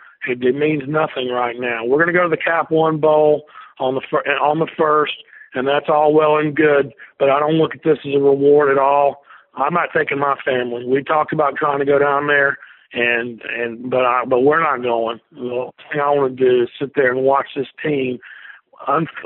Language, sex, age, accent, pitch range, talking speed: English, male, 50-69, American, 135-160 Hz, 230 wpm